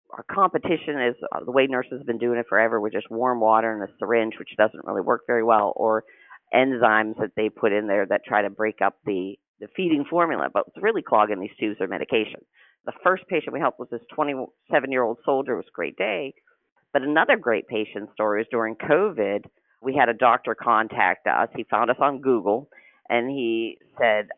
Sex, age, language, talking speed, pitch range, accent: female, 50-69, English, 205 wpm, 110-145 Hz, American